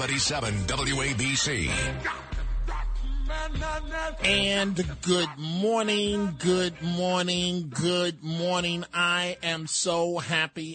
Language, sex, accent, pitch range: English, male, American, 155-185 Hz